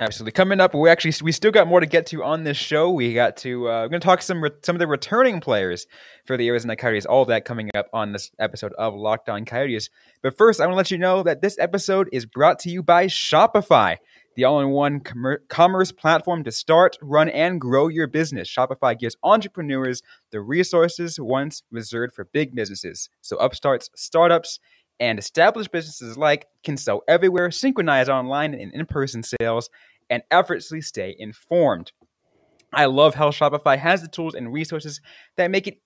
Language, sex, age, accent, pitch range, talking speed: English, male, 20-39, American, 125-170 Hz, 195 wpm